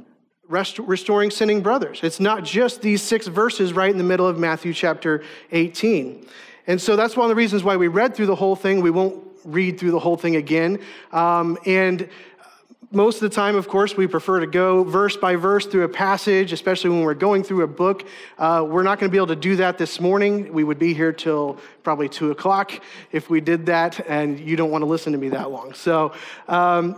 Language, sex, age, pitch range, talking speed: English, male, 40-59, 170-210 Hz, 220 wpm